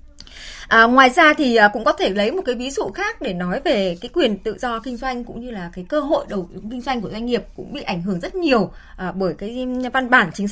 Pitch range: 195-260 Hz